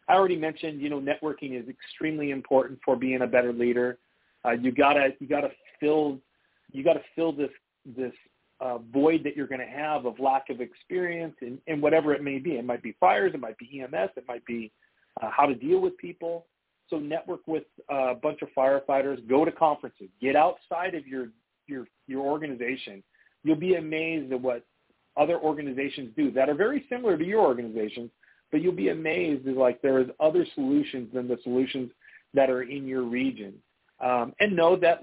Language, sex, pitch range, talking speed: English, male, 125-155 Hz, 190 wpm